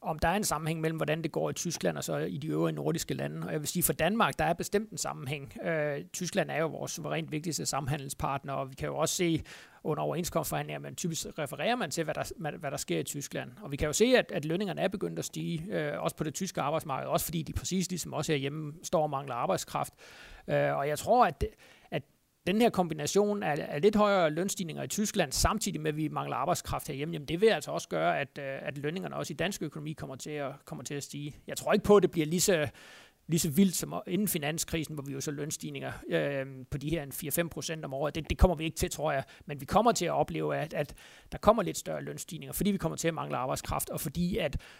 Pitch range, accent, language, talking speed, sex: 145-175 Hz, native, Danish, 250 wpm, male